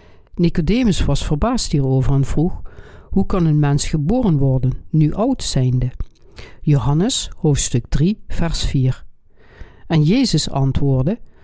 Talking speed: 120 wpm